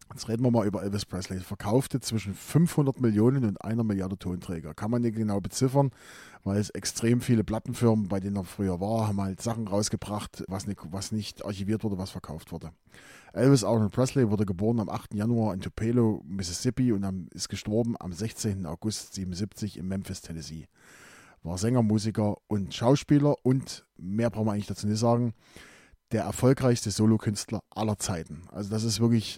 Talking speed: 180 wpm